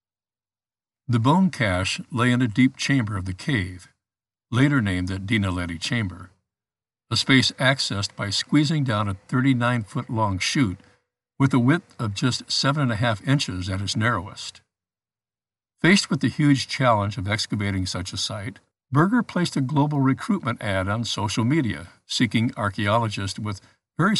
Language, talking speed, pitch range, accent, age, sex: English, 150 wpm, 100-130 Hz, American, 60-79, male